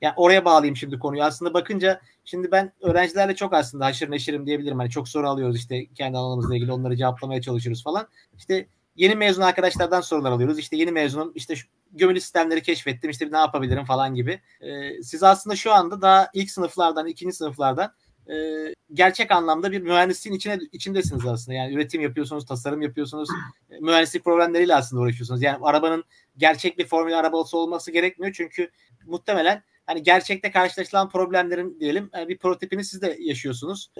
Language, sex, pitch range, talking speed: Turkish, male, 145-185 Hz, 160 wpm